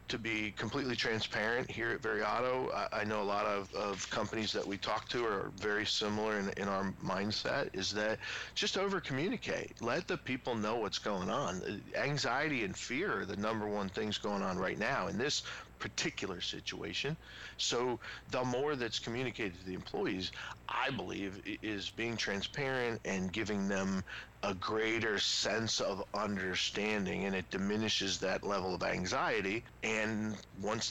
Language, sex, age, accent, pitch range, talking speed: English, male, 40-59, American, 95-120 Hz, 160 wpm